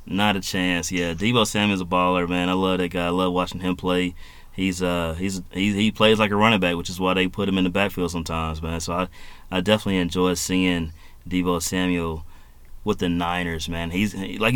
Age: 30-49